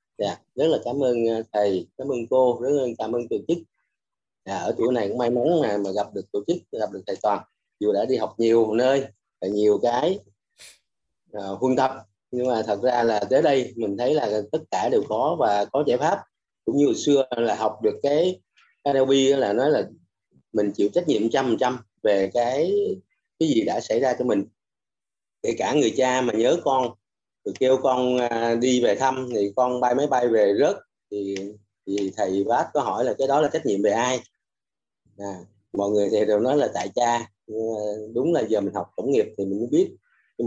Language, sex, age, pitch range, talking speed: Vietnamese, male, 30-49, 100-130 Hz, 210 wpm